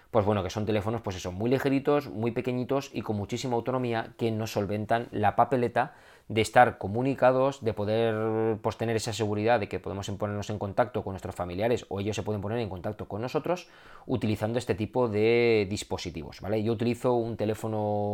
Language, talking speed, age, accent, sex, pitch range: Spanish, 190 wpm, 20-39, Spanish, male, 105-120 Hz